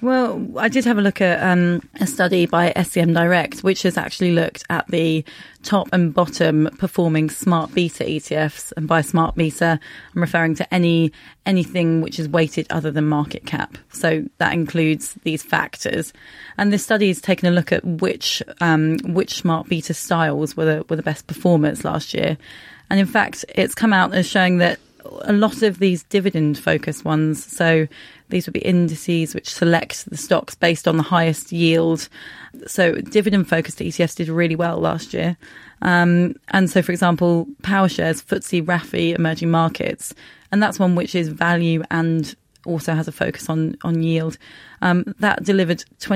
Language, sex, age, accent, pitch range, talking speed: English, female, 30-49, British, 160-185 Hz, 175 wpm